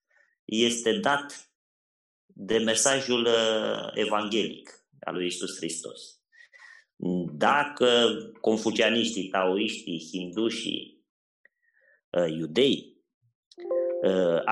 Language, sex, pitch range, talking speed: Romanian, male, 105-140 Hz, 70 wpm